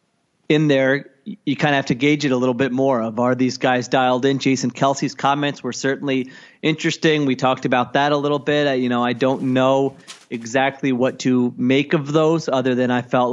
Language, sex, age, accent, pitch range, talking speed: English, male, 30-49, American, 125-145 Hz, 210 wpm